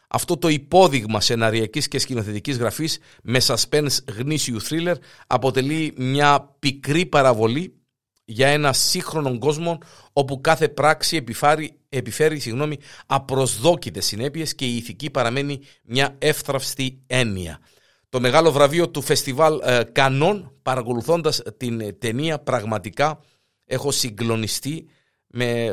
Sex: male